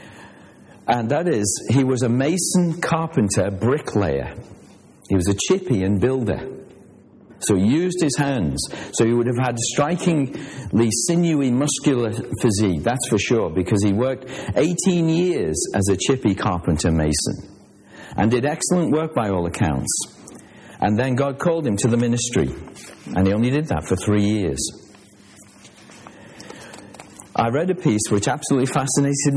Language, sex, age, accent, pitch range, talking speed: English, male, 50-69, British, 100-145 Hz, 145 wpm